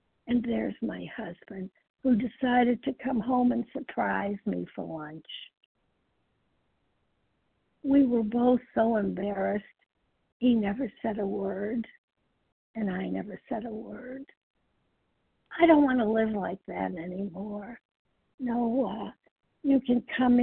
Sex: female